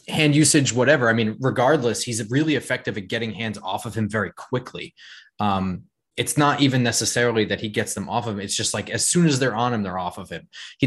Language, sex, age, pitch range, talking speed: English, male, 20-39, 105-135 Hz, 235 wpm